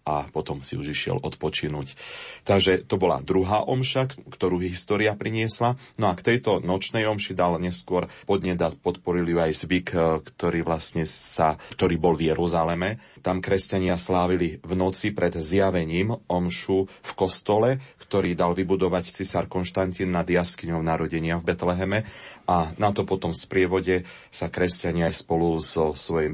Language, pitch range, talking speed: Slovak, 85-100 Hz, 150 wpm